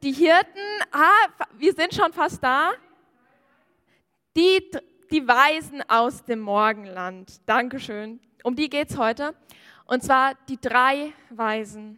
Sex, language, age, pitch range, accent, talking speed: female, German, 10-29, 235-295 Hz, German, 125 wpm